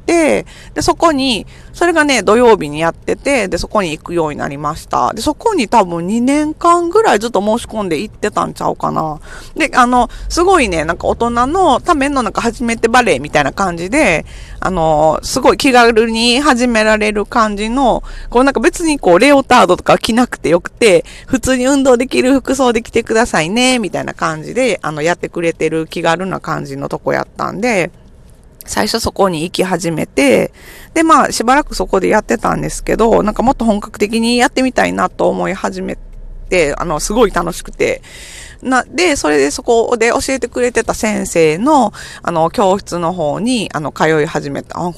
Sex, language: female, Japanese